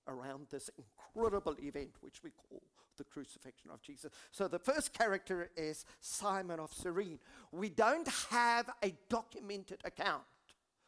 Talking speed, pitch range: 140 wpm, 160-235 Hz